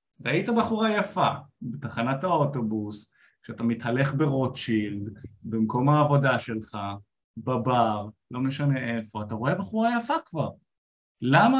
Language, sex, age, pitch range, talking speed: Hebrew, male, 20-39, 120-165 Hz, 110 wpm